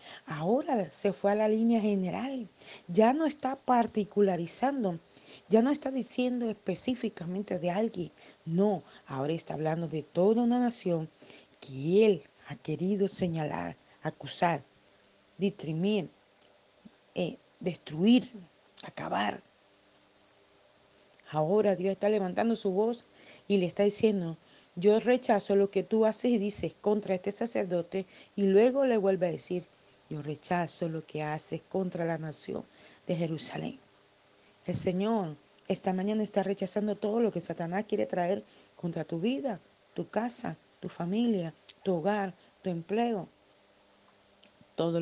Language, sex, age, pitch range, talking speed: Spanish, female, 50-69, 165-215 Hz, 130 wpm